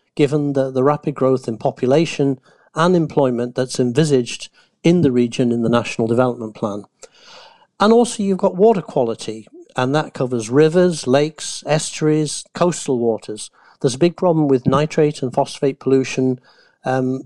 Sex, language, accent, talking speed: male, English, British, 150 wpm